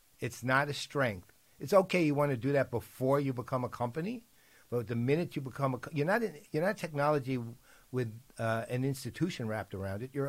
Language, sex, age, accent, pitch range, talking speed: English, male, 60-79, American, 115-145 Hz, 200 wpm